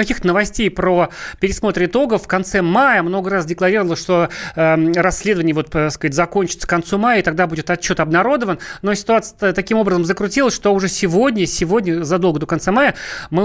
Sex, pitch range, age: male, 180-240 Hz, 30-49